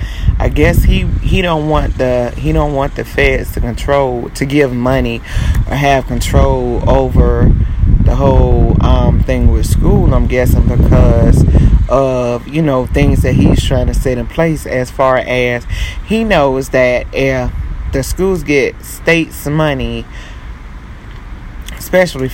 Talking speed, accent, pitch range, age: 145 wpm, American, 115-140 Hz, 30-49